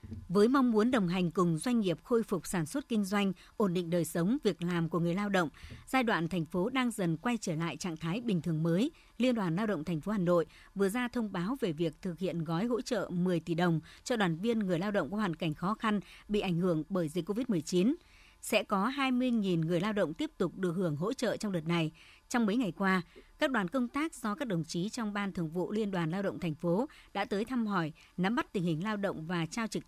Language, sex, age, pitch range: Vietnamese, male, 60-79, 175-220 Hz